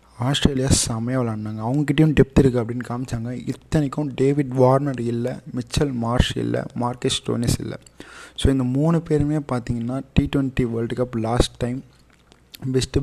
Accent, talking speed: native, 135 wpm